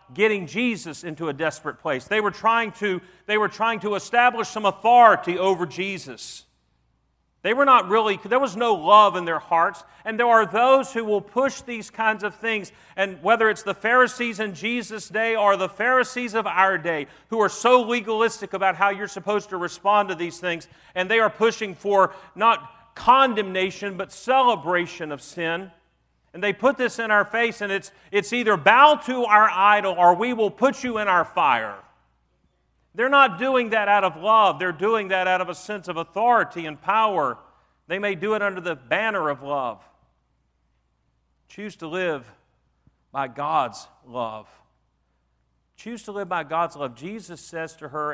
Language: English